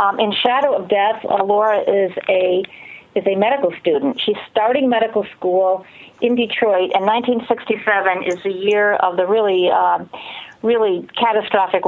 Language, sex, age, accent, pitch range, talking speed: English, female, 50-69, American, 190-240 Hz, 145 wpm